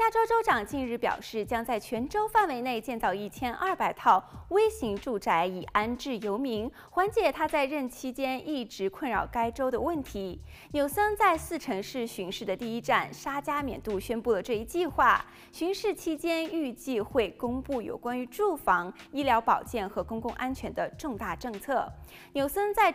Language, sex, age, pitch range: Chinese, female, 20-39, 220-350 Hz